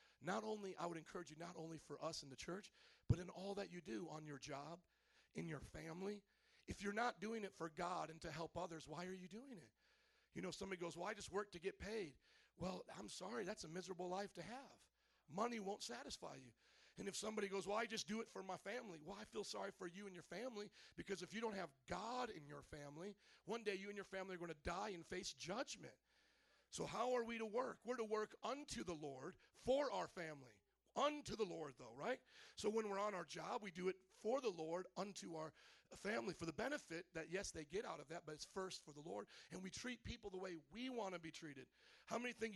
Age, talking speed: 40-59, 245 wpm